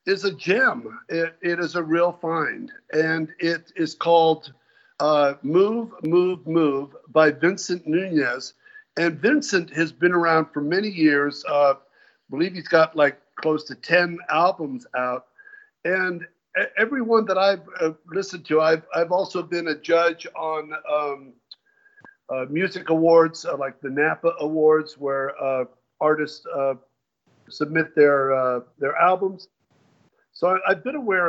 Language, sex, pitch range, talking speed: English, male, 150-185 Hz, 145 wpm